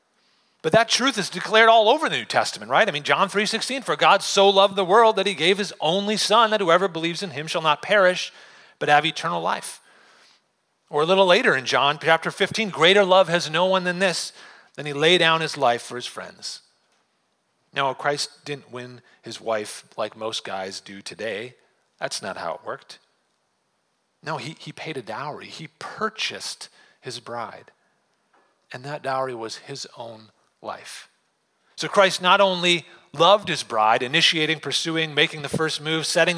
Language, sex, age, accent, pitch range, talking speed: English, male, 40-59, American, 130-190 Hz, 185 wpm